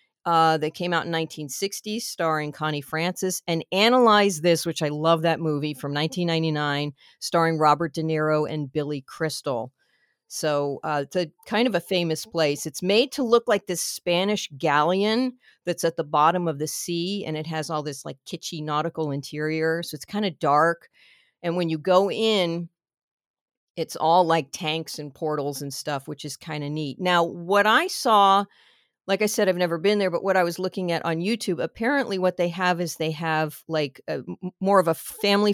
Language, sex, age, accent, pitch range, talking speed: English, female, 50-69, American, 155-190 Hz, 190 wpm